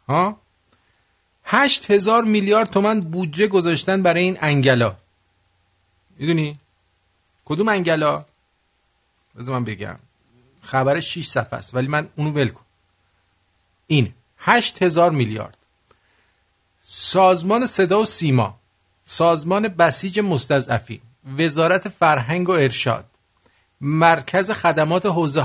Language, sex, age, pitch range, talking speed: English, male, 50-69, 120-190 Hz, 100 wpm